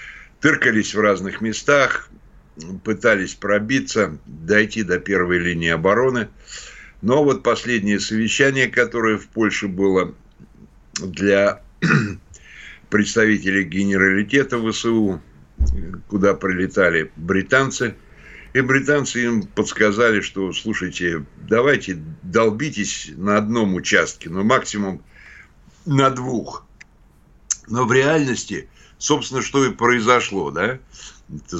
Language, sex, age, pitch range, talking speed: Russian, male, 60-79, 95-115 Hz, 95 wpm